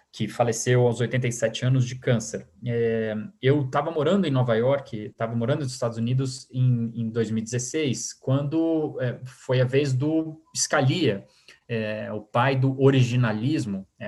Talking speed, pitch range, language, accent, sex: 130 wpm, 115-140 Hz, Portuguese, Brazilian, male